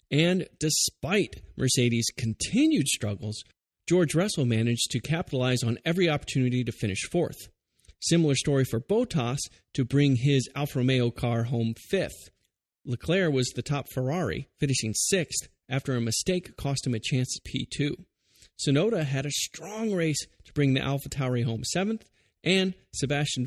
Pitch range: 125-160 Hz